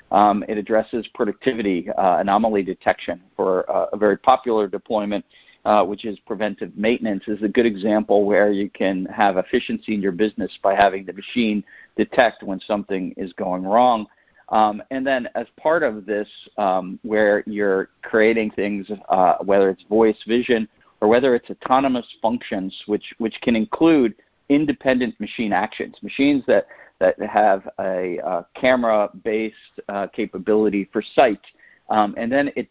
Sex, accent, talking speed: male, American, 155 wpm